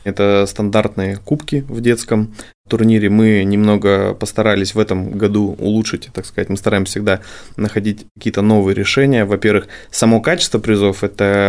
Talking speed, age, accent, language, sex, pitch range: 140 wpm, 20-39, native, Russian, male, 105-115 Hz